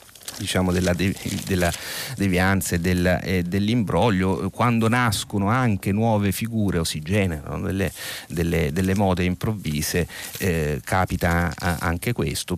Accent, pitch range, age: native, 85-100 Hz, 30-49